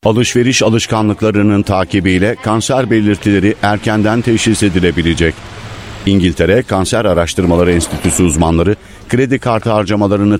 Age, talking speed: 50-69, 90 wpm